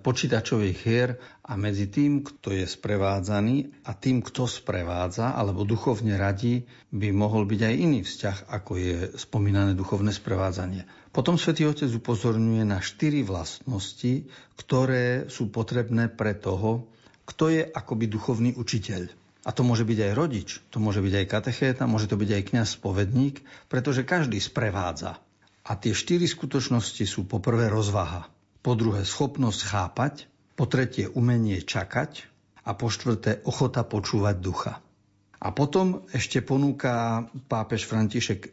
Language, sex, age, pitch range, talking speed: Slovak, male, 60-79, 100-130 Hz, 140 wpm